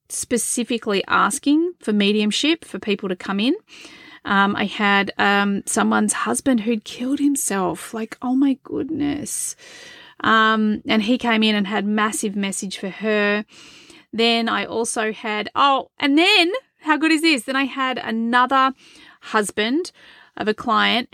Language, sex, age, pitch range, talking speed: English, female, 30-49, 205-275 Hz, 150 wpm